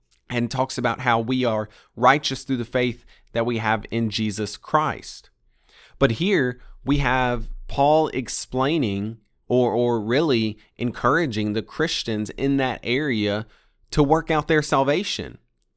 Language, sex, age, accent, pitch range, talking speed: English, male, 30-49, American, 110-140 Hz, 135 wpm